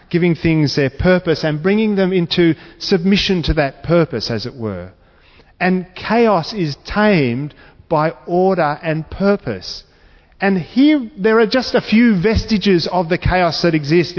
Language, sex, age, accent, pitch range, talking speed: English, male, 40-59, Australian, 145-195 Hz, 150 wpm